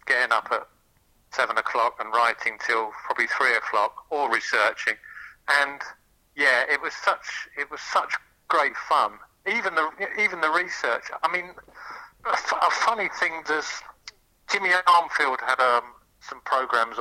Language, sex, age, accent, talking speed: English, male, 50-69, British, 150 wpm